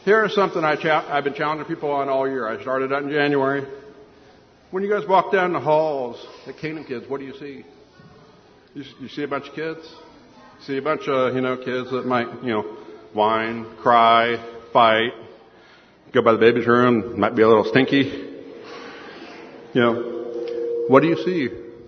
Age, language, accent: 50-69, English, American